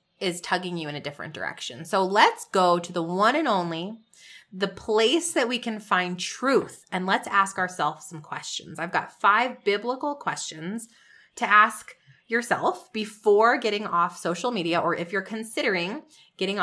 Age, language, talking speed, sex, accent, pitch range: 20-39, English, 165 wpm, female, American, 175-230 Hz